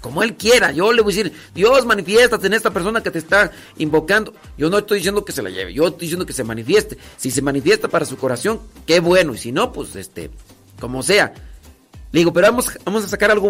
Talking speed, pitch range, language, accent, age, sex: 240 wpm, 145-205 Hz, Spanish, Mexican, 40-59, male